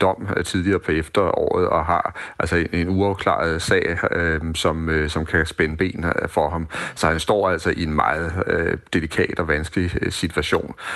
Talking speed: 175 wpm